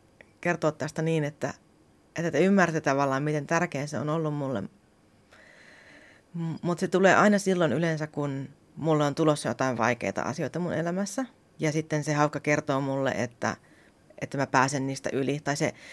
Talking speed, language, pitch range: 160 wpm, Finnish, 135-160 Hz